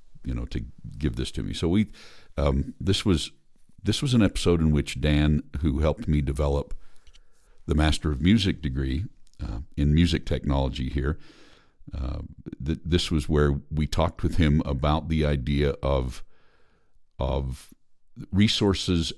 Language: English